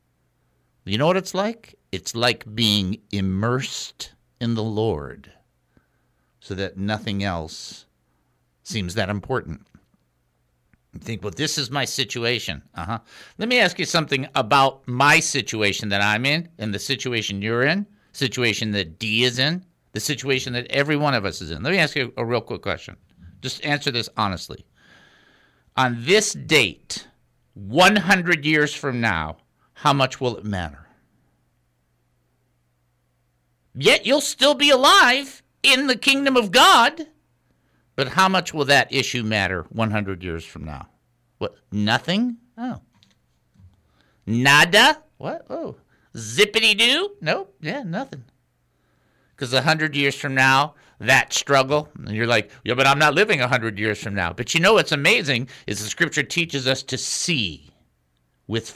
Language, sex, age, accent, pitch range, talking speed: English, male, 50-69, American, 95-150 Hz, 150 wpm